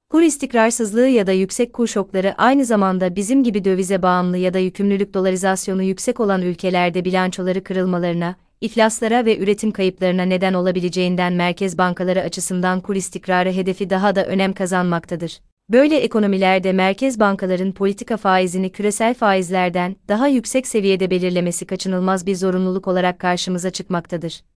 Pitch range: 185-215 Hz